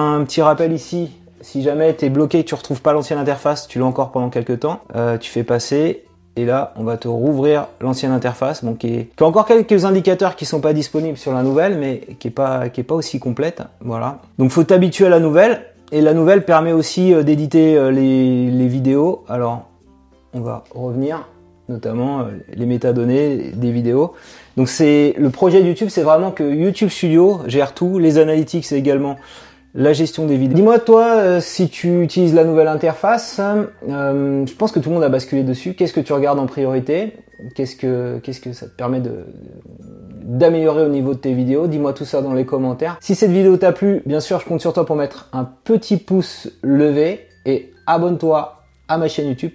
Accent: French